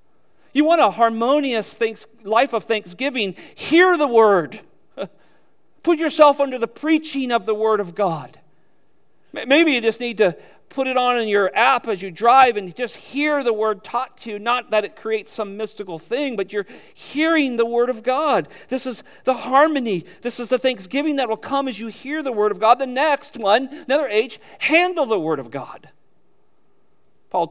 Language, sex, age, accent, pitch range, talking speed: English, male, 40-59, American, 185-270 Hz, 185 wpm